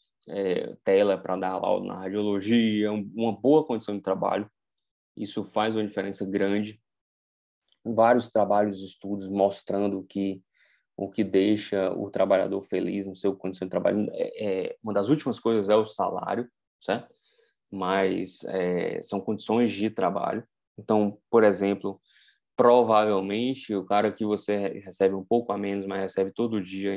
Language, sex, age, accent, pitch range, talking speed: Portuguese, male, 20-39, Brazilian, 95-110 Hz, 150 wpm